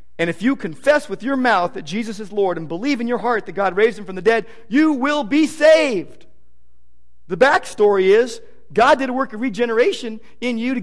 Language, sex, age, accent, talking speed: English, male, 40-59, American, 220 wpm